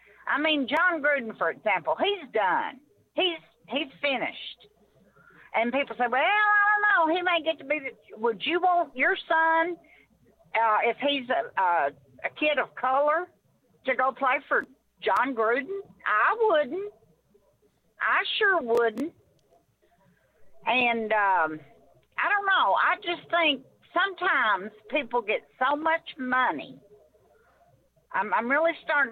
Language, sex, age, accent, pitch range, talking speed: English, female, 50-69, American, 220-315 Hz, 140 wpm